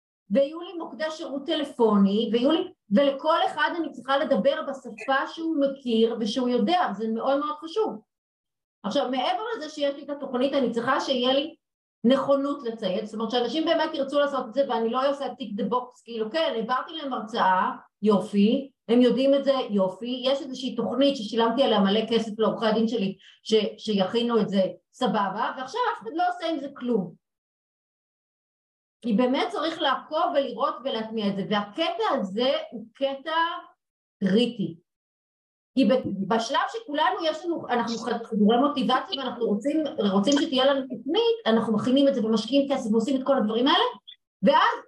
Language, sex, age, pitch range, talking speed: Hebrew, female, 30-49, 220-290 Hz, 160 wpm